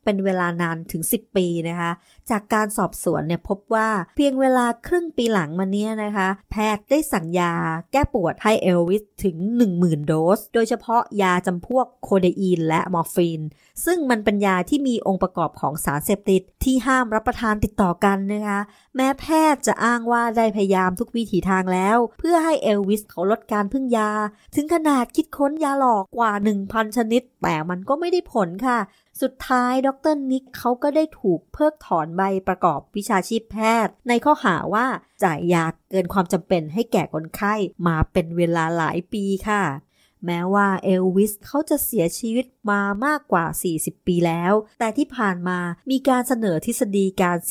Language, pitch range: Thai, 180-240 Hz